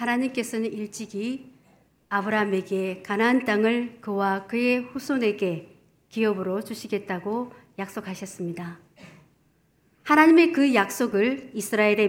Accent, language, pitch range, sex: native, Korean, 195-270 Hz, male